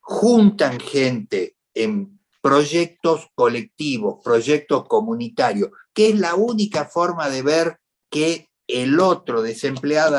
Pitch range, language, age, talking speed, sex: 135-210 Hz, Spanish, 60-79, 105 wpm, male